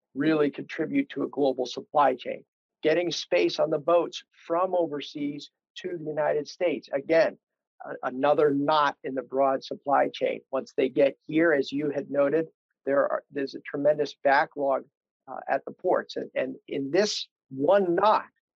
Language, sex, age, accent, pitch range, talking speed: English, male, 50-69, American, 135-165 Hz, 165 wpm